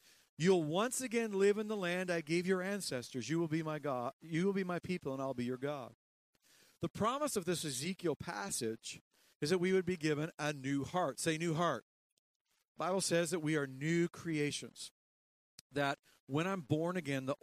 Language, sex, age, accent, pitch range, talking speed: English, male, 50-69, American, 145-190 Hz, 195 wpm